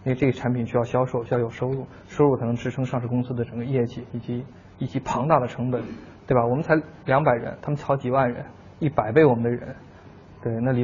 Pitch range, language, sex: 120-140 Hz, Chinese, male